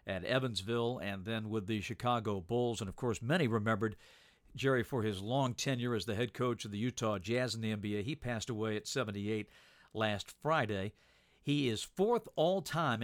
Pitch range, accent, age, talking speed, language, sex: 105-125 Hz, American, 50-69, 185 wpm, English, male